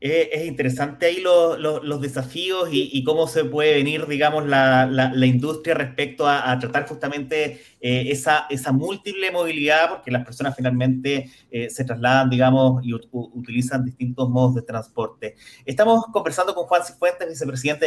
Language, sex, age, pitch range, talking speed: Spanish, male, 30-49, 130-155 Hz, 165 wpm